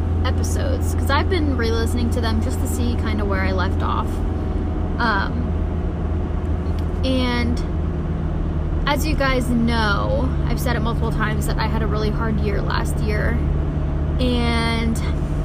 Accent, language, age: American, English, 10-29